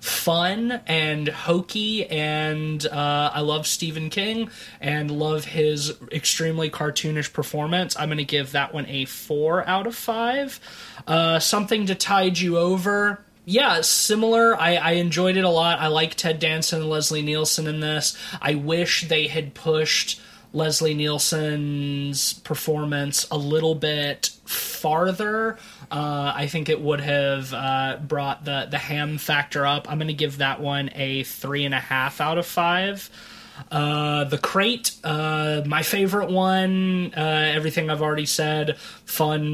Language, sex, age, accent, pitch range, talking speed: English, male, 20-39, American, 145-170 Hz, 150 wpm